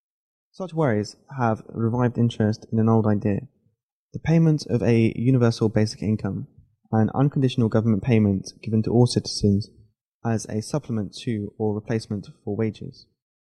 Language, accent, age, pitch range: Chinese, British, 20-39, 105-135 Hz